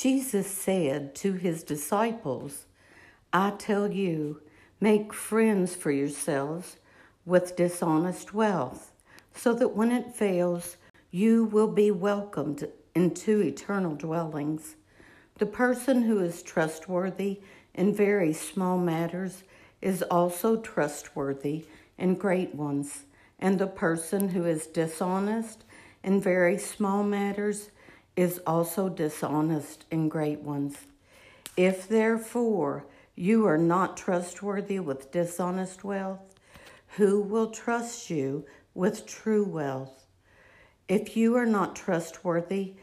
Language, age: English, 60-79